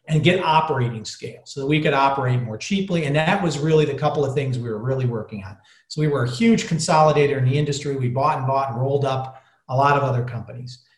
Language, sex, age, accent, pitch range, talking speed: English, male, 40-59, American, 135-170 Hz, 245 wpm